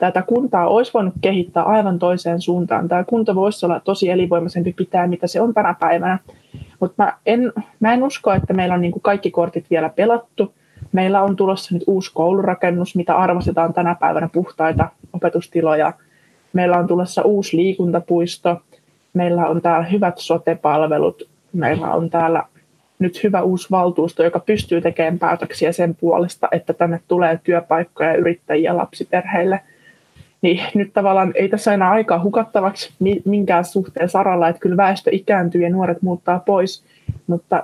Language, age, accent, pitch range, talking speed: Finnish, 20-39, native, 170-190 Hz, 155 wpm